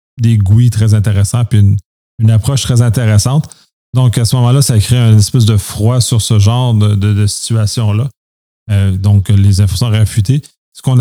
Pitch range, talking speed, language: 105-120 Hz, 190 wpm, French